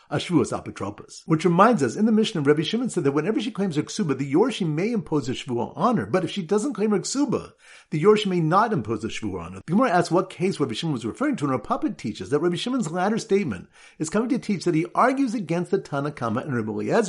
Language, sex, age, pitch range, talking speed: English, male, 50-69, 140-205 Hz, 255 wpm